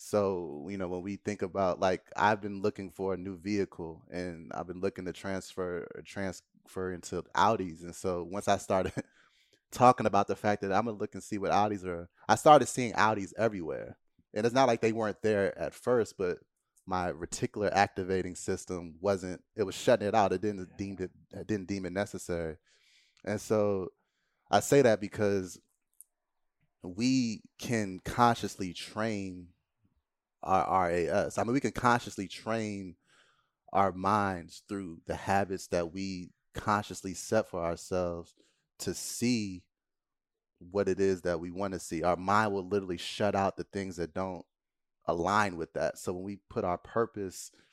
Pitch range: 90-100 Hz